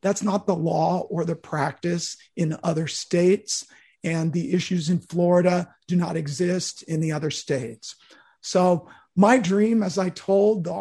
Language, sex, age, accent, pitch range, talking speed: English, male, 40-59, American, 160-190 Hz, 160 wpm